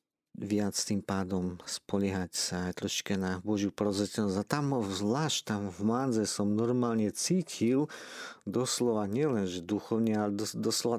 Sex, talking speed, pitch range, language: male, 140 wpm, 100-115 Hz, Slovak